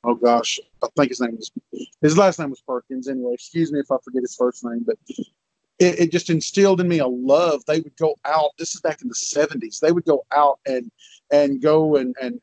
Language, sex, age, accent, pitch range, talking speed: English, male, 40-59, American, 135-170 Hz, 230 wpm